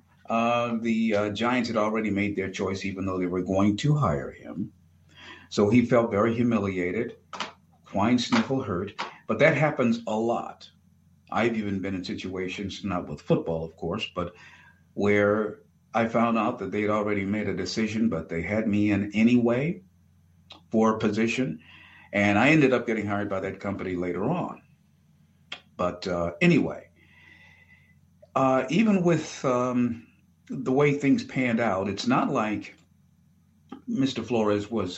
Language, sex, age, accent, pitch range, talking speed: English, male, 50-69, American, 90-115 Hz, 155 wpm